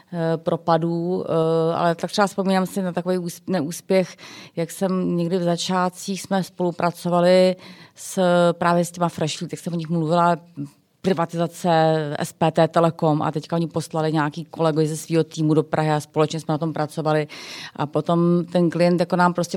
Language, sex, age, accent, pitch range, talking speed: Czech, female, 30-49, native, 140-165 Hz, 165 wpm